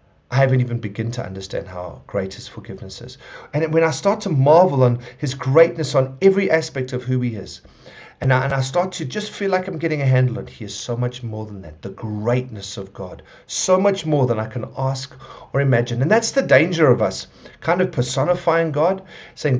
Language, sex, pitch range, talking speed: English, male, 115-155 Hz, 220 wpm